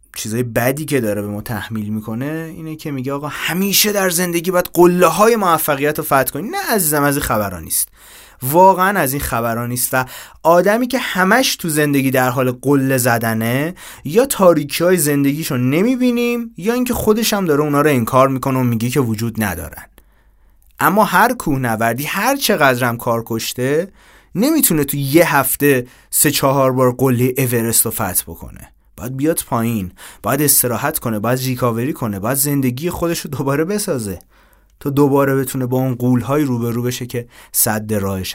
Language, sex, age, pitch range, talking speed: Persian, male, 30-49, 120-160 Hz, 160 wpm